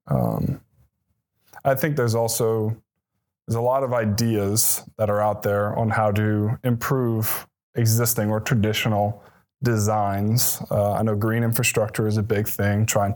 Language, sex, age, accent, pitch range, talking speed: English, male, 20-39, American, 105-120 Hz, 145 wpm